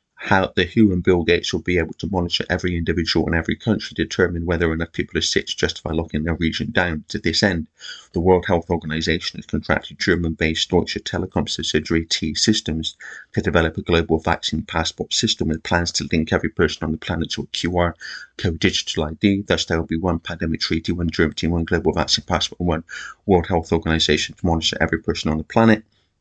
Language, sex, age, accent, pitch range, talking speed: English, male, 30-49, British, 80-95 Hz, 210 wpm